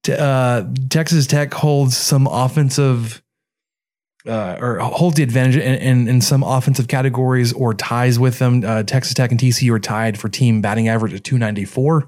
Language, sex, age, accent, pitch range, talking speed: English, male, 20-39, American, 120-145 Hz, 170 wpm